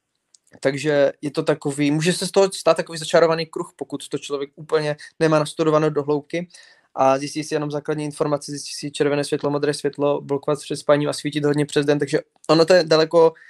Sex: male